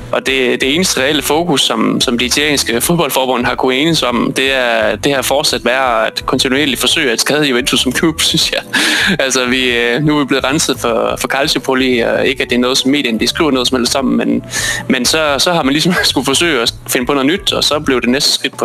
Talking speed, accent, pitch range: 235 wpm, native, 120-140 Hz